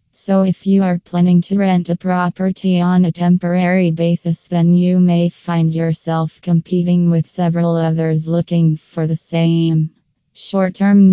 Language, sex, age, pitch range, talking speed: English, female, 20-39, 165-180 Hz, 145 wpm